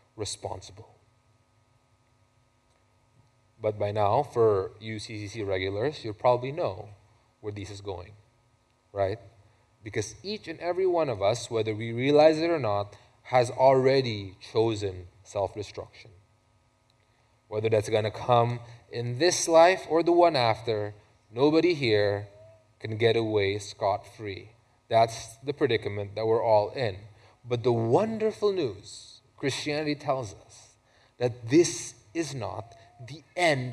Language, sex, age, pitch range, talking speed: English, male, 20-39, 105-160 Hz, 130 wpm